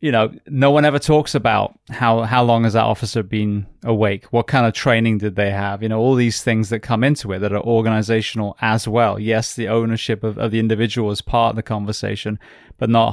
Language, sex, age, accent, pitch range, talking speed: English, male, 20-39, British, 110-130 Hz, 230 wpm